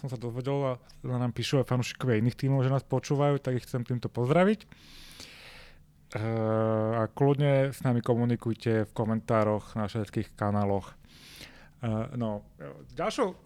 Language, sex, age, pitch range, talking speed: Slovak, male, 30-49, 110-130 Hz, 145 wpm